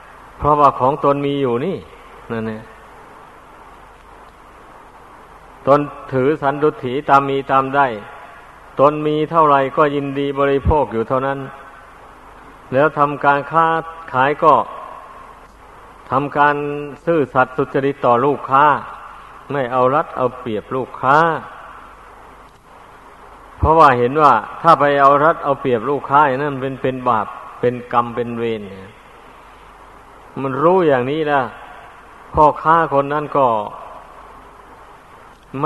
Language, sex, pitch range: Thai, male, 130-145 Hz